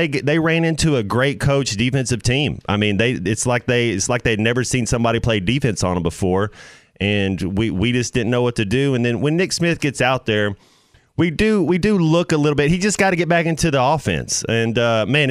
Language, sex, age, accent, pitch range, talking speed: English, male, 30-49, American, 100-125 Hz, 235 wpm